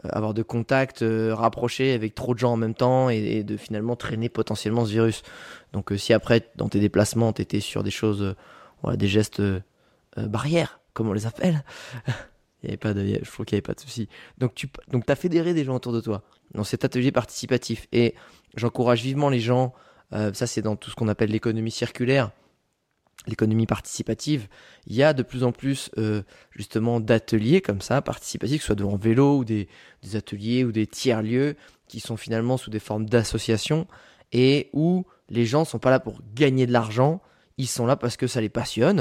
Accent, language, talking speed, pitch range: French, French, 210 wpm, 110-130 Hz